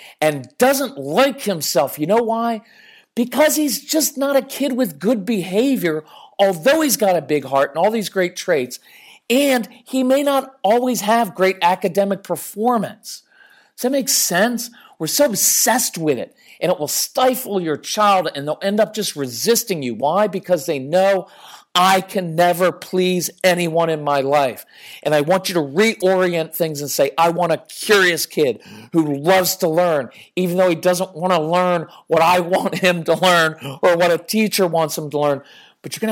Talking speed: 185 wpm